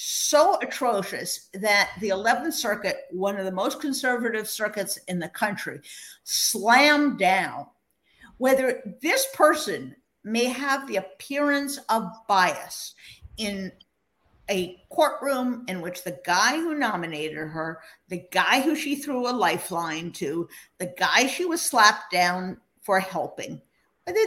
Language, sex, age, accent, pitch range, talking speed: English, female, 50-69, American, 185-260 Hz, 130 wpm